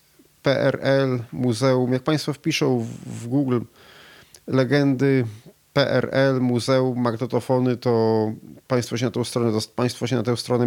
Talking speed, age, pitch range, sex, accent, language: 125 wpm, 40-59, 110-130 Hz, male, native, Polish